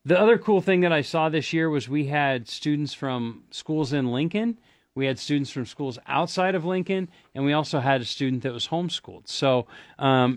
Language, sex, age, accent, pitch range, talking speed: English, male, 40-59, American, 125-155 Hz, 210 wpm